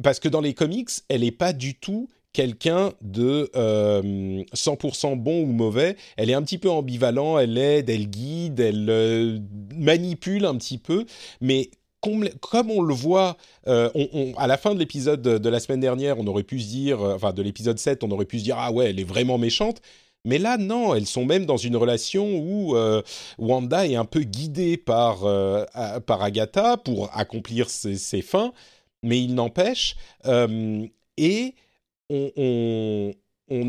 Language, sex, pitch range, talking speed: French, male, 110-155 Hz, 185 wpm